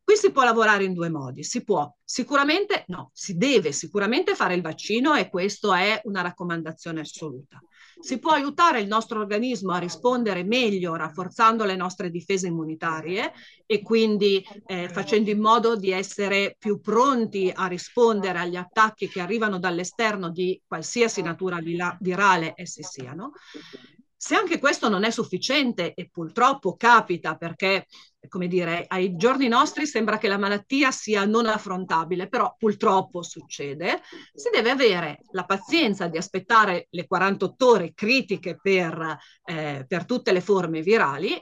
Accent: native